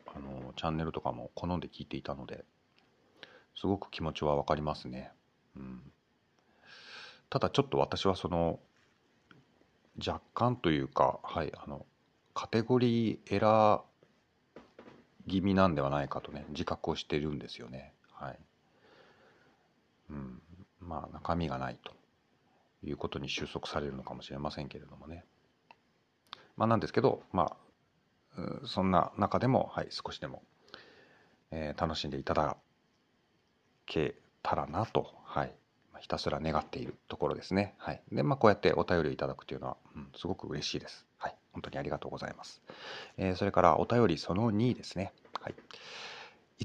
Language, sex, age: Japanese, male, 40-59